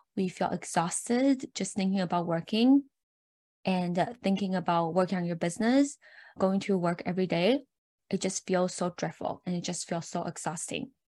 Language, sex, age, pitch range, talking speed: English, female, 10-29, 180-230 Hz, 165 wpm